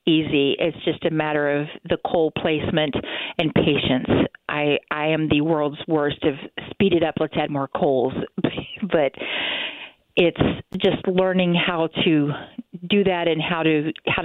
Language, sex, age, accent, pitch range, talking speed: English, female, 40-59, American, 160-195 Hz, 155 wpm